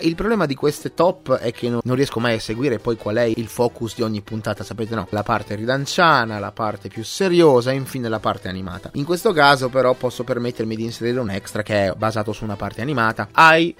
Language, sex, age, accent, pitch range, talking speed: Italian, male, 30-49, native, 125-200 Hz, 225 wpm